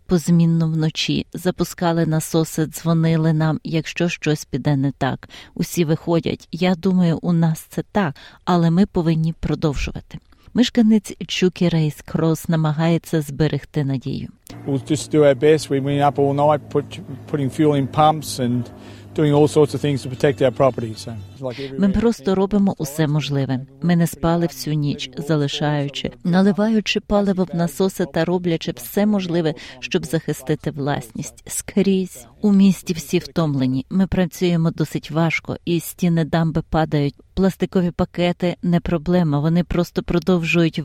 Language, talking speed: Ukrainian, 105 wpm